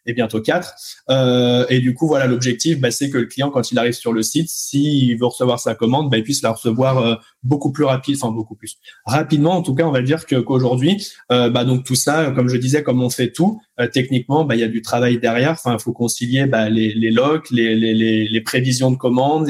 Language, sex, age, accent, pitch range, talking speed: French, male, 20-39, French, 120-140 Hz, 250 wpm